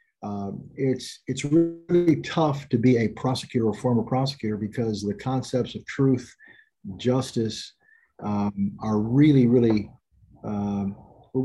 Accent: American